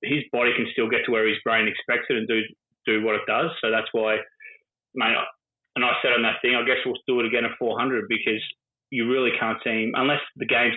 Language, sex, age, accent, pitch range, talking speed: English, male, 20-39, Australian, 110-125 Hz, 250 wpm